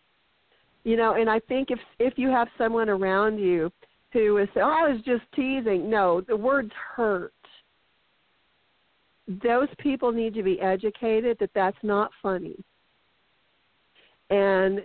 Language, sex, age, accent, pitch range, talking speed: English, female, 50-69, American, 190-230 Hz, 135 wpm